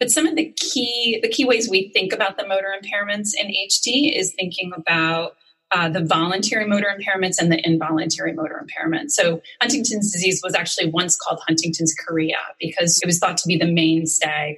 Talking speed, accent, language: 190 wpm, American, English